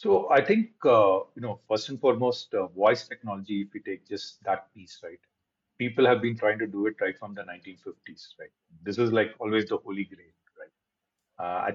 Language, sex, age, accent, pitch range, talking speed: English, male, 40-59, Indian, 100-120 Hz, 210 wpm